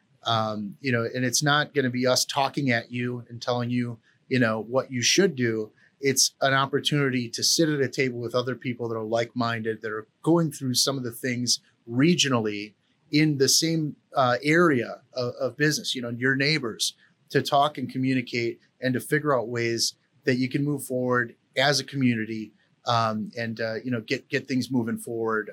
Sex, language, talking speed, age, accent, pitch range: male, English, 195 wpm, 30-49, American, 115-140 Hz